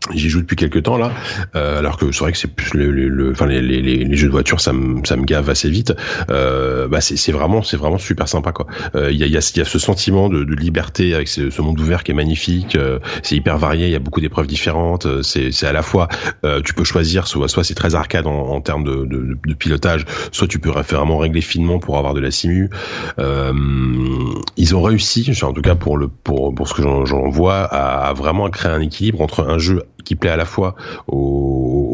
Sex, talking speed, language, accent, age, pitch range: male, 250 wpm, French, French, 30-49, 70-90 Hz